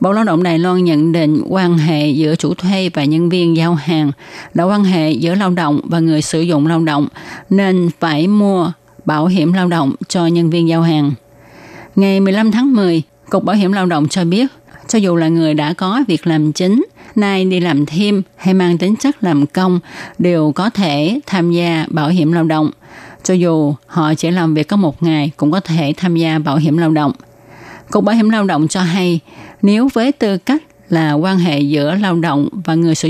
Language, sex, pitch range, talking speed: Vietnamese, female, 155-190 Hz, 215 wpm